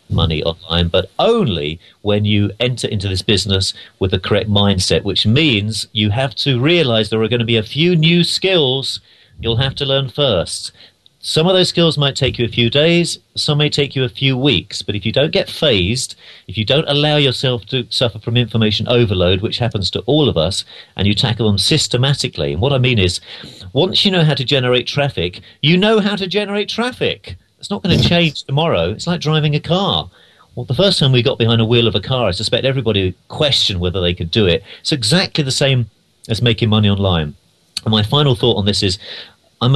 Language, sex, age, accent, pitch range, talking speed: English, male, 40-59, British, 95-135 Hz, 215 wpm